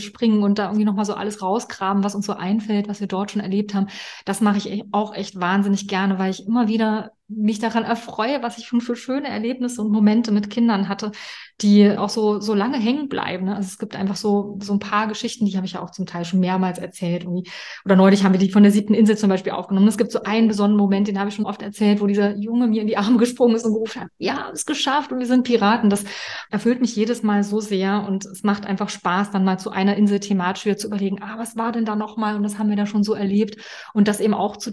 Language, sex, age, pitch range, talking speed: German, female, 20-39, 195-230 Hz, 265 wpm